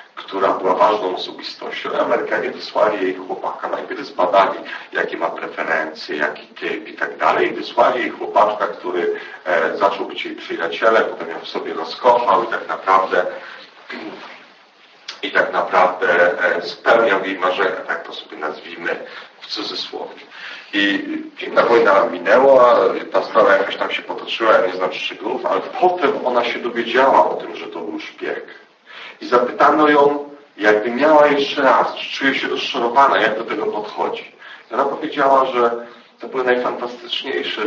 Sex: male